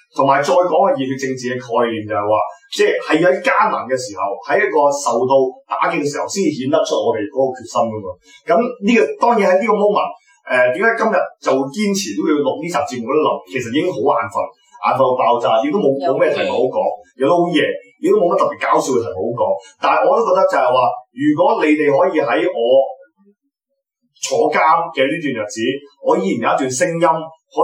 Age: 20-39